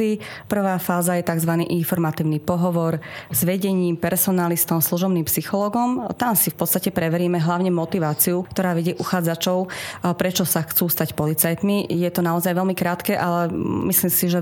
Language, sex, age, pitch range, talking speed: Slovak, female, 30-49, 165-185 Hz, 145 wpm